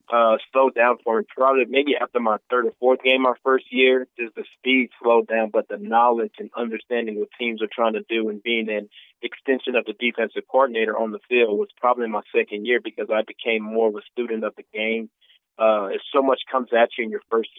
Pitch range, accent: 115-130 Hz, American